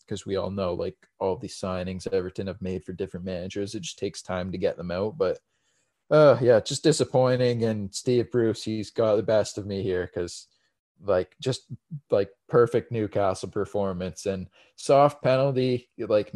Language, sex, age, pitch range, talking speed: English, male, 20-39, 100-125 Hz, 175 wpm